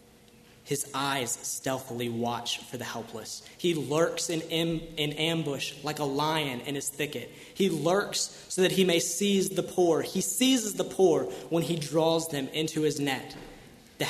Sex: male